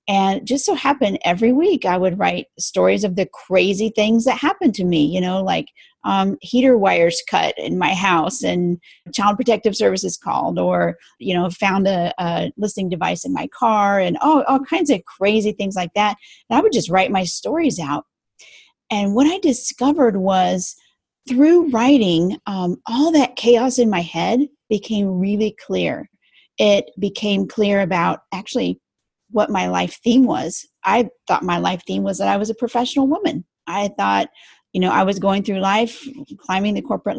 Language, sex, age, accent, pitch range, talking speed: English, female, 40-59, American, 185-260 Hz, 180 wpm